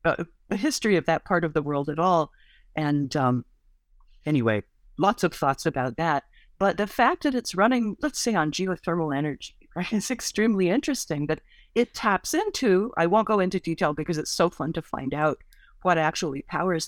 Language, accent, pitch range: English, American, 140-185 Hz